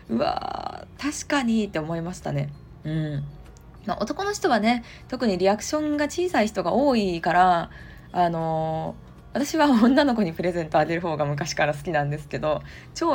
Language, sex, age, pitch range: Japanese, female, 20-39, 150-225 Hz